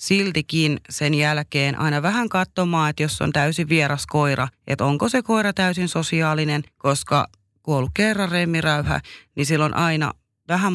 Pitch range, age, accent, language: 130-160 Hz, 30-49, native, Finnish